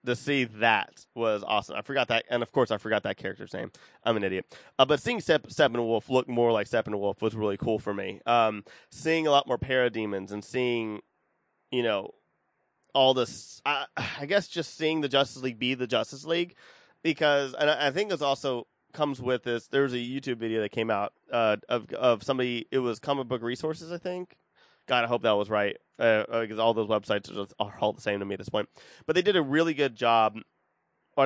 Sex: male